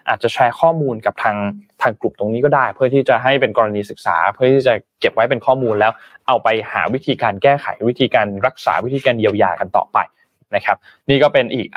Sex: male